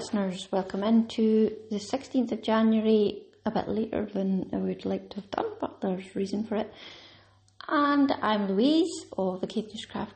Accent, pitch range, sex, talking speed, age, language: British, 175-220 Hz, female, 170 wpm, 30-49, English